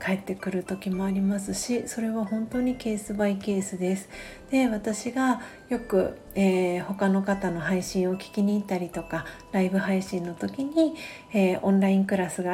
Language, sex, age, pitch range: Japanese, female, 40-59, 185-220 Hz